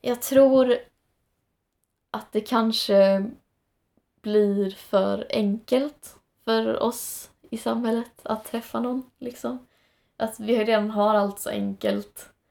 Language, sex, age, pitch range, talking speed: Swedish, female, 20-39, 190-225 Hz, 110 wpm